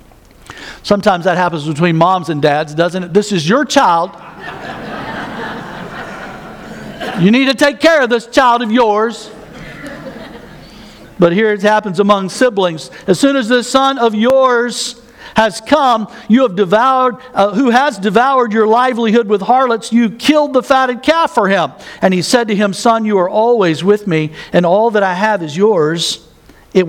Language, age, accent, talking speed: English, 60-79, American, 165 wpm